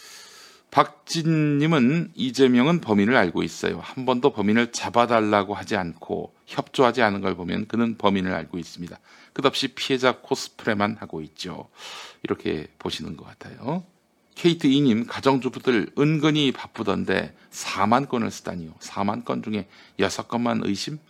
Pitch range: 100-135 Hz